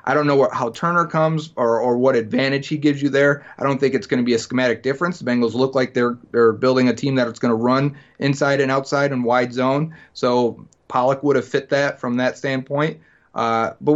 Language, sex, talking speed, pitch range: English, male, 235 wpm, 120-145 Hz